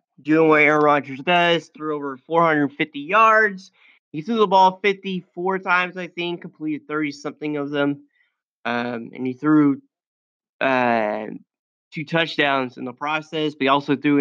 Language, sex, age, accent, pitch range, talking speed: English, male, 20-39, American, 140-175 Hz, 150 wpm